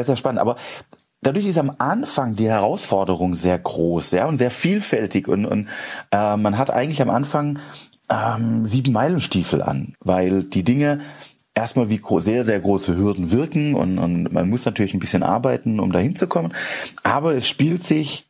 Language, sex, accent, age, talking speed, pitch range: German, male, German, 30-49, 165 wpm, 100-135 Hz